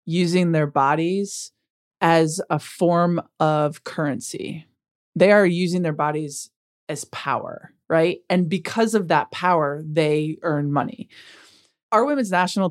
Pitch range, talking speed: 155-195 Hz, 125 wpm